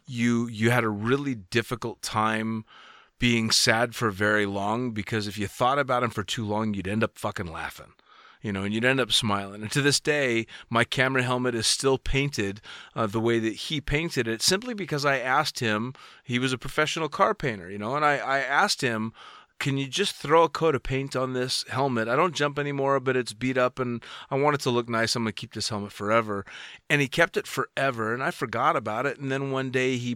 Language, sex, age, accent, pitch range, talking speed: English, male, 30-49, American, 110-135 Hz, 230 wpm